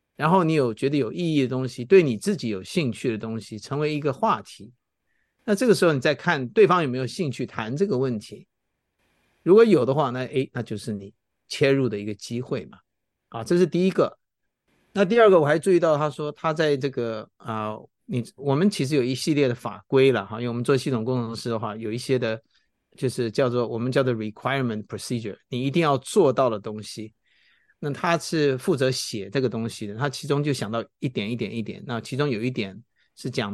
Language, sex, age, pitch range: Chinese, male, 50-69, 115-150 Hz